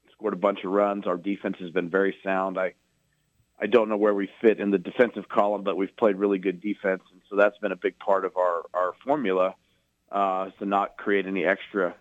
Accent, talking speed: American, 220 wpm